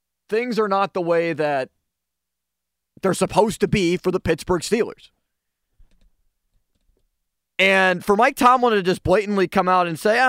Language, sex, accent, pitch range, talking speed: English, male, American, 140-195 Hz, 145 wpm